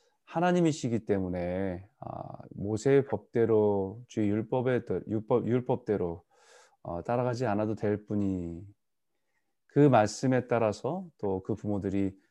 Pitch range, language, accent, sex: 100-135 Hz, Korean, native, male